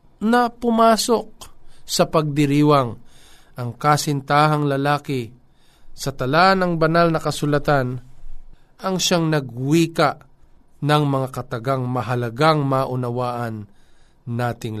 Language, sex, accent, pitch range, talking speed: Filipino, male, native, 125-170 Hz, 90 wpm